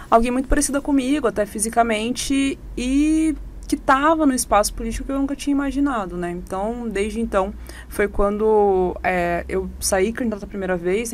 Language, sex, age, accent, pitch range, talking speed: Portuguese, female, 20-39, Brazilian, 190-275 Hz, 165 wpm